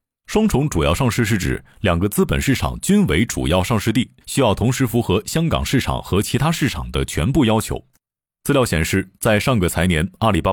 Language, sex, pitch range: Chinese, male, 90-130 Hz